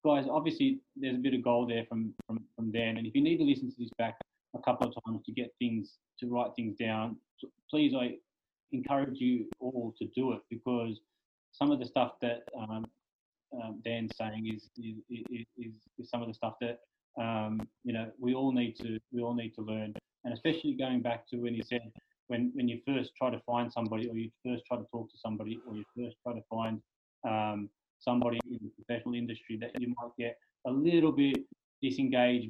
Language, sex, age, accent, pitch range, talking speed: English, male, 20-39, Australian, 115-130 Hz, 215 wpm